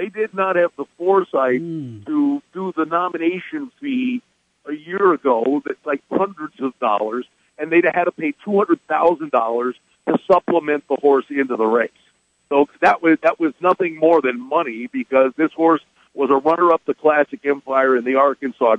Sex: male